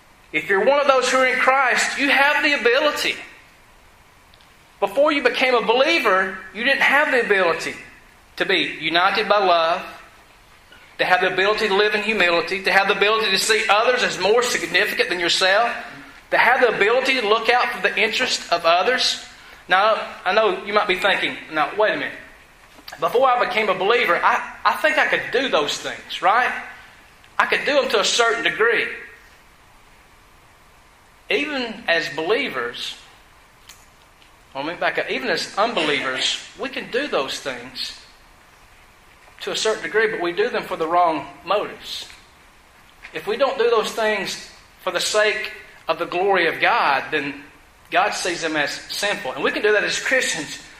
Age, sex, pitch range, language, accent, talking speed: 40-59, male, 190-250 Hz, English, American, 175 wpm